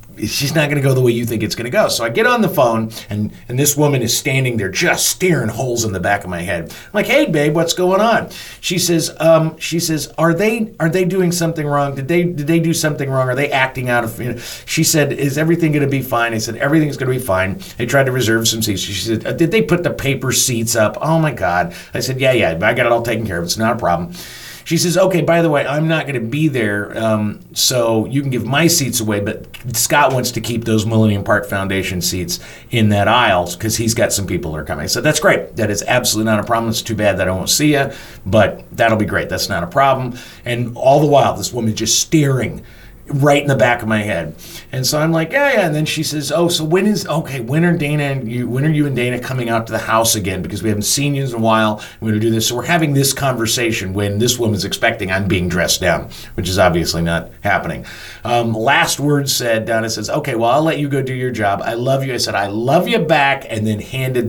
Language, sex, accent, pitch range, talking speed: English, male, American, 110-150 Hz, 265 wpm